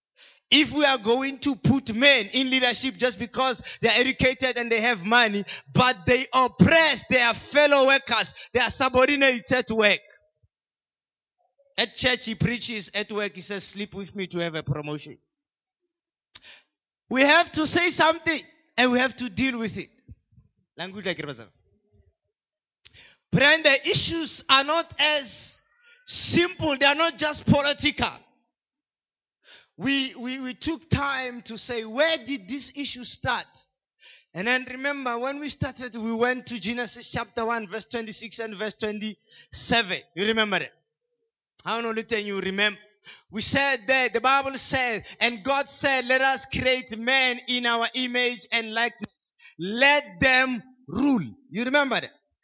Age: 20-39